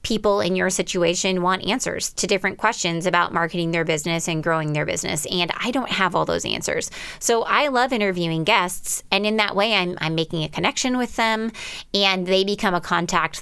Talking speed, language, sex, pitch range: 200 wpm, English, female, 170-220 Hz